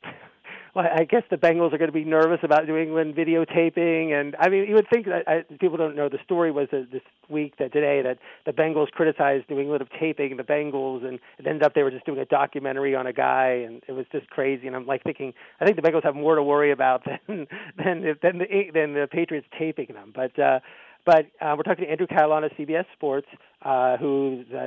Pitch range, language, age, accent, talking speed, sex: 135-160 Hz, English, 40-59, American, 245 wpm, male